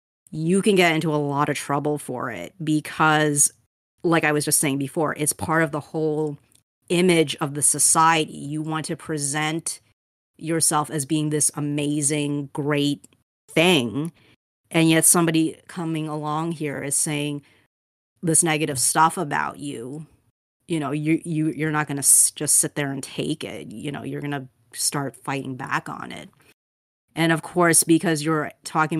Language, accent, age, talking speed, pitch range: English, American, 30-49, 170 wpm, 145-160 Hz